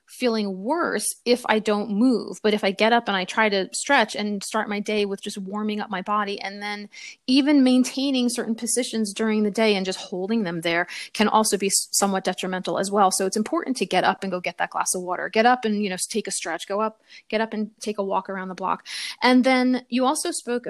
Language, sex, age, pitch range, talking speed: English, female, 30-49, 205-245 Hz, 245 wpm